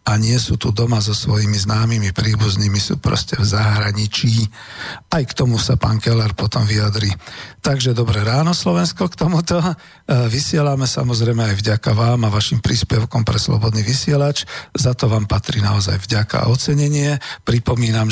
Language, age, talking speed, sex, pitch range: Slovak, 50-69, 160 wpm, male, 110-130 Hz